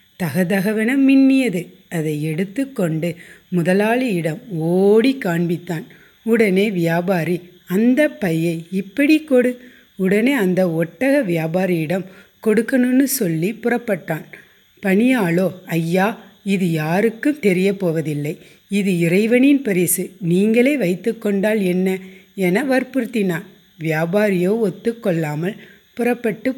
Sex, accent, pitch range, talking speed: female, native, 180-230 Hz, 90 wpm